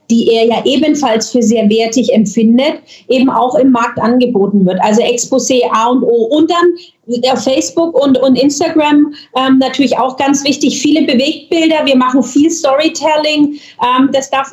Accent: German